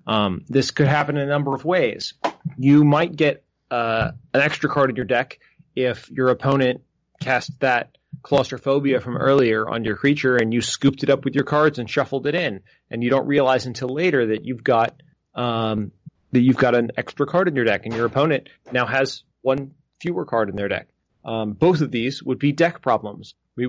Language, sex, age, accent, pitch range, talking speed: English, male, 30-49, American, 115-140 Hz, 205 wpm